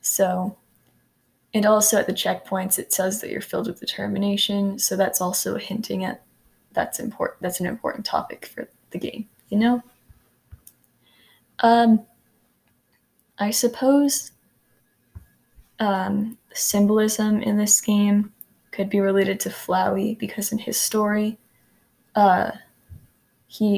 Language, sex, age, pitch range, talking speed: English, female, 10-29, 190-215 Hz, 120 wpm